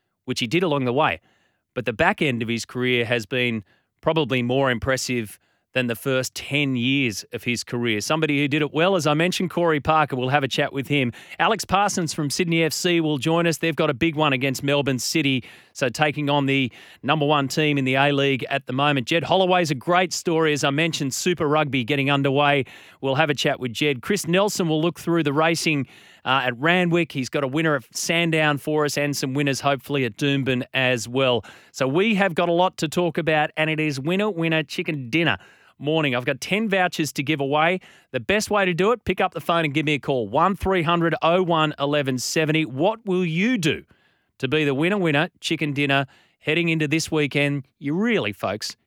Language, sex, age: English, male, 30-49